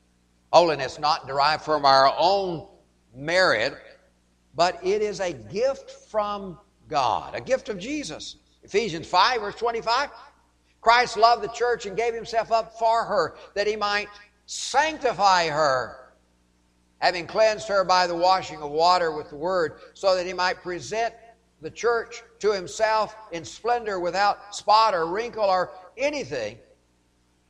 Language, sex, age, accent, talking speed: English, male, 60-79, American, 140 wpm